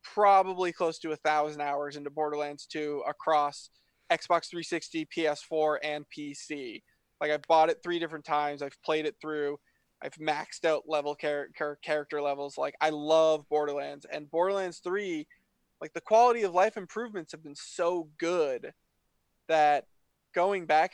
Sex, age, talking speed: male, 20-39, 150 wpm